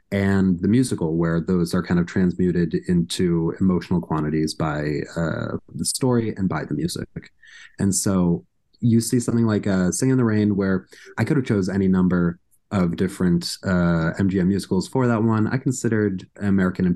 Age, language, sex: 30-49, English, male